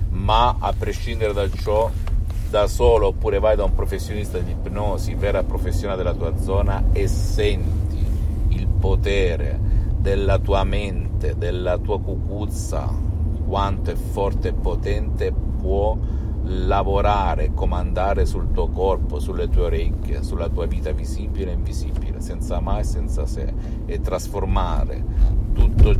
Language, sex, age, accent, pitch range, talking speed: Italian, male, 50-69, native, 90-105 Hz, 130 wpm